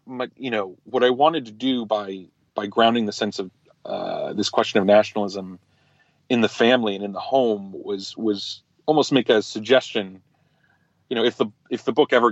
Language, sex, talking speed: English, male, 195 wpm